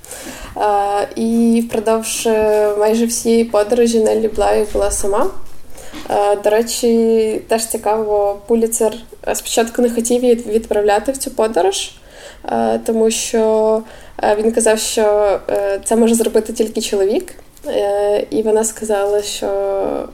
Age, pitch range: 20-39, 205-230 Hz